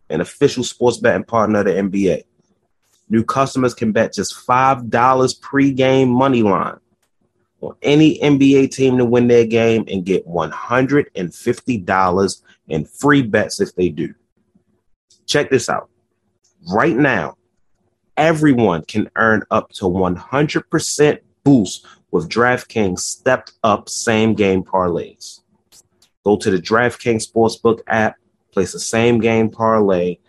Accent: American